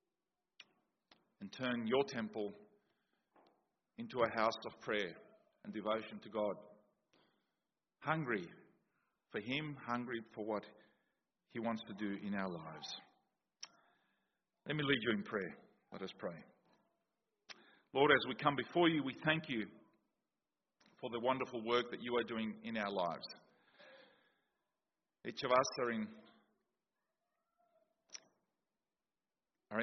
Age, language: 40-59, English